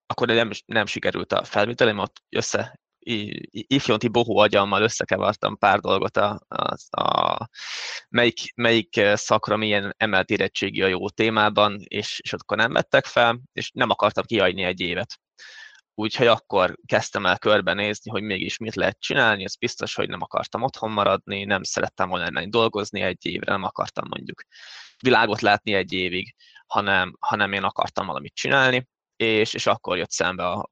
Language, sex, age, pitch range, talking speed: Hungarian, male, 20-39, 100-115 Hz, 155 wpm